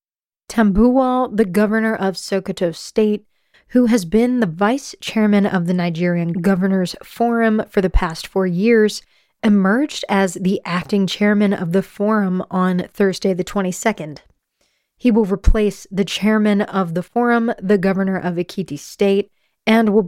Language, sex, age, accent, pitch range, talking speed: English, female, 20-39, American, 190-225 Hz, 145 wpm